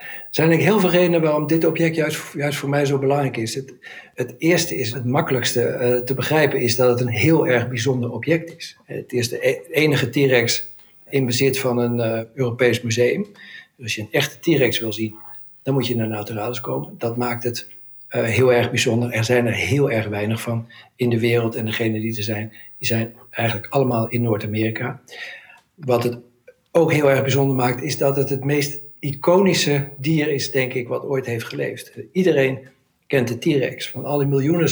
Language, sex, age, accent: Dutch, male, 60-79, Dutch